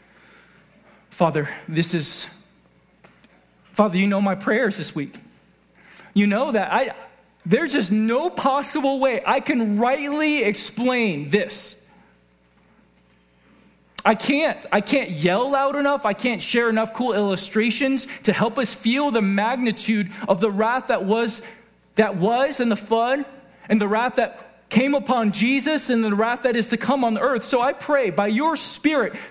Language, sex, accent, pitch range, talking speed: English, male, American, 195-255 Hz, 155 wpm